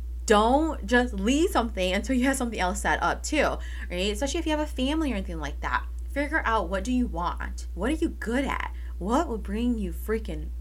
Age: 20-39